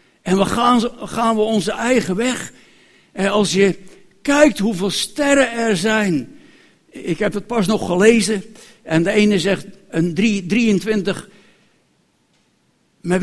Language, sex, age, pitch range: Dutch, male, 60-79, 195-270 Hz